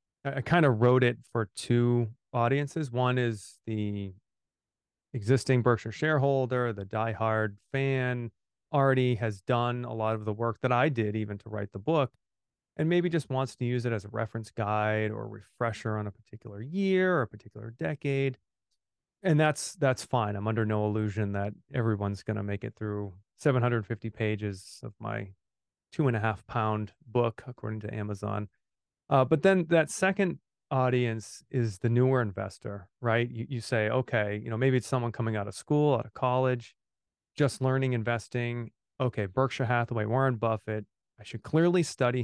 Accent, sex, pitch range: American, male, 105-130 Hz